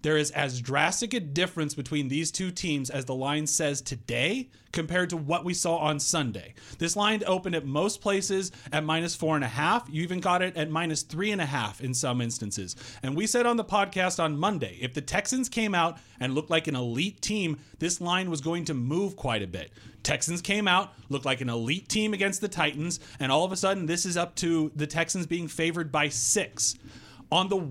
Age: 30-49